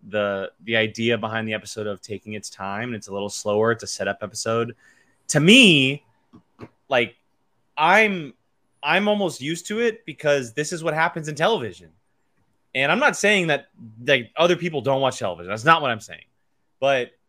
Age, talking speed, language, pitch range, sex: 20-39, 175 wpm, English, 110-150 Hz, male